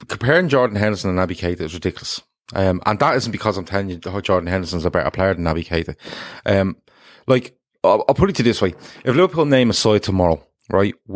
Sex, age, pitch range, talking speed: male, 30-49, 90-120 Hz, 225 wpm